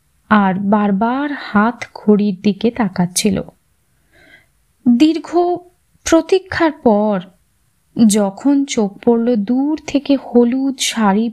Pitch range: 210-275 Hz